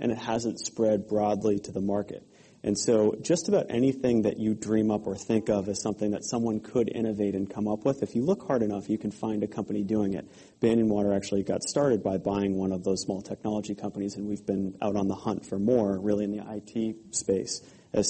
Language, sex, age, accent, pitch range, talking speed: English, male, 30-49, American, 100-110 Hz, 230 wpm